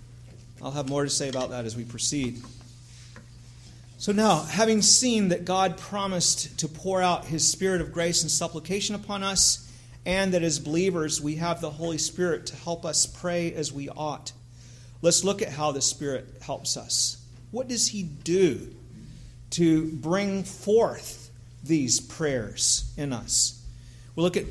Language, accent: English, American